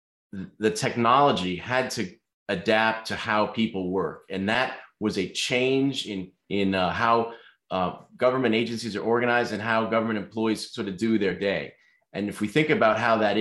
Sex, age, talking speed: male, 30-49, 175 wpm